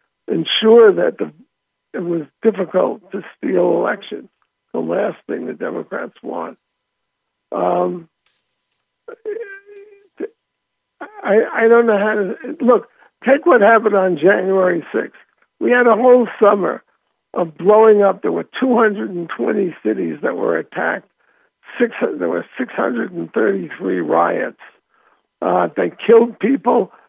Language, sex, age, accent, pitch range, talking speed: English, male, 60-79, American, 190-240 Hz, 115 wpm